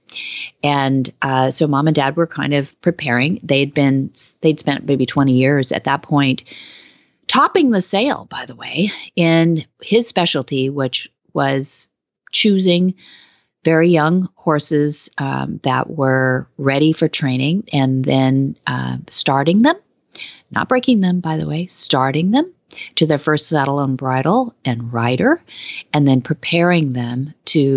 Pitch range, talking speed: 135-180 Hz, 145 wpm